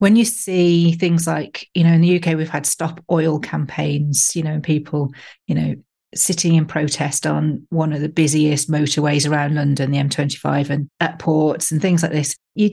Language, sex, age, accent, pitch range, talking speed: English, female, 40-59, British, 155-185 Hz, 200 wpm